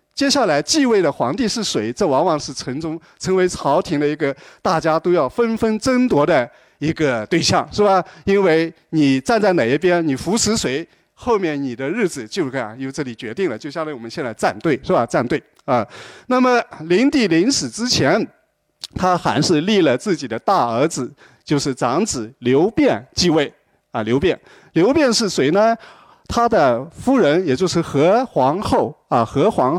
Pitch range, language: 145-220 Hz, Chinese